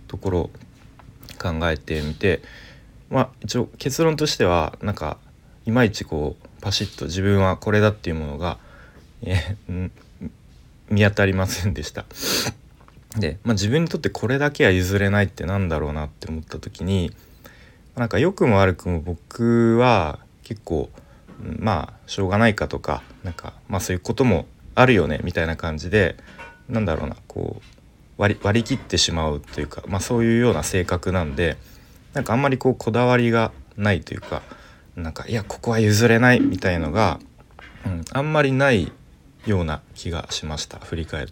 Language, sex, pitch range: Japanese, male, 85-120 Hz